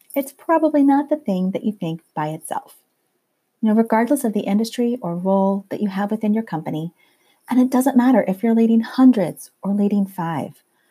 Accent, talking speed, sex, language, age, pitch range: American, 195 wpm, female, English, 40-59, 190-250 Hz